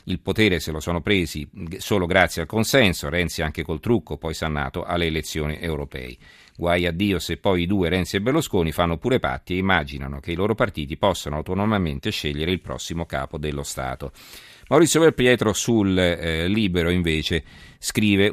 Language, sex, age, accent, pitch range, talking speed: Italian, male, 40-59, native, 80-100 Hz, 175 wpm